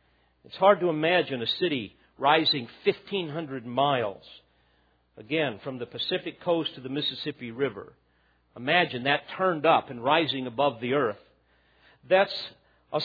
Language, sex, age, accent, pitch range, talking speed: English, male, 50-69, American, 125-185 Hz, 135 wpm